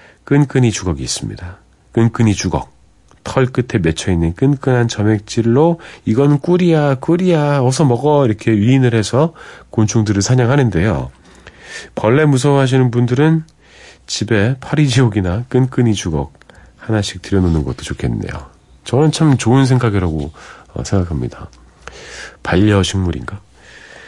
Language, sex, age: Korean, male, 40-59